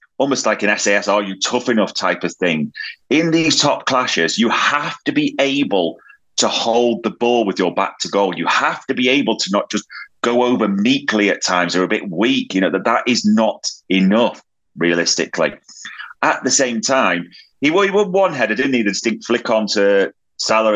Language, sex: English, male